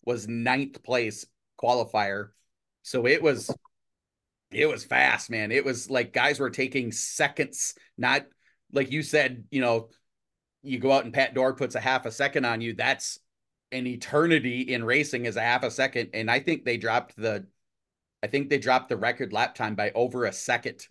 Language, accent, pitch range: English, American, 115-145 Hz